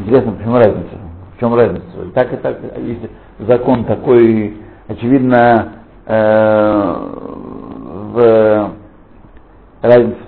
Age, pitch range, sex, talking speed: 60-79, 100-130 Hz, male, 105 wpm